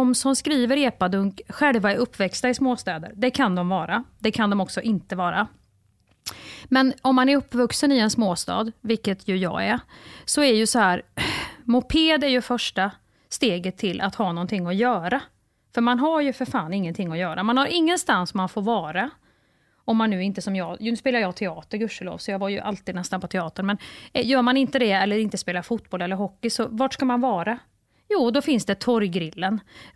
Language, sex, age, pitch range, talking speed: Swedish, female, 30-49, 195-265 Hz, 205 wpm